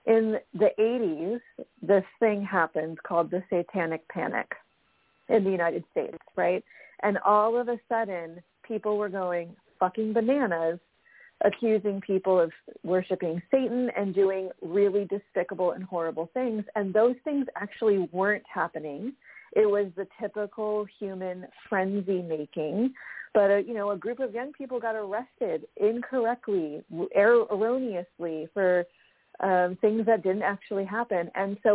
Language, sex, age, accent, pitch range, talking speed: English, female, 40-59, American, 180-225 Hz, 140 wpm